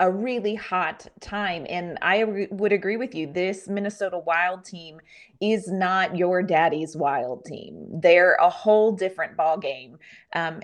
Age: 30-49